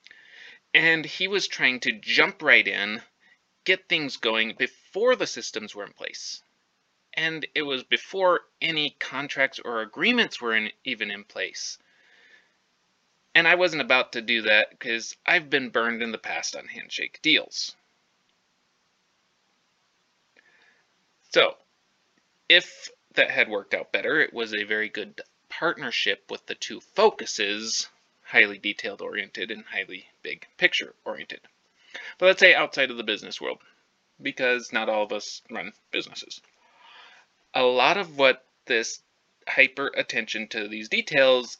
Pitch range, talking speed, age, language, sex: 125-190 Hz, 140 wpm, 30-49, English, male